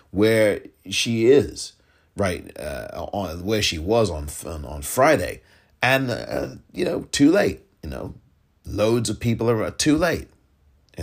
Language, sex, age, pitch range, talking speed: English, male, 30-49, 80-105 Hz, 145 wpm